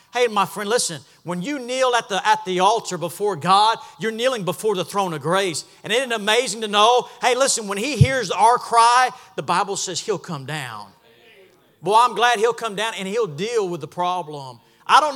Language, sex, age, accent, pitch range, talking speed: English, male, 40-59, American, 160-230 Hz, 215 wpm